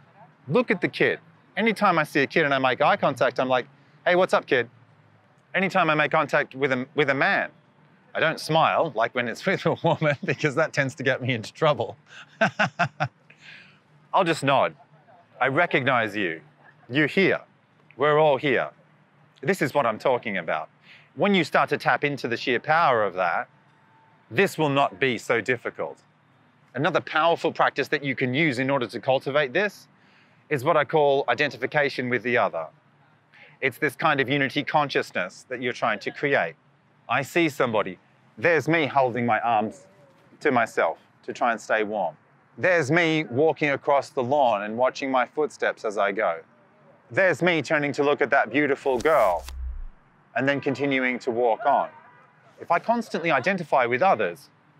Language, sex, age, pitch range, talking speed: English, male, 30-49, 135-165 Hz, 175 wpm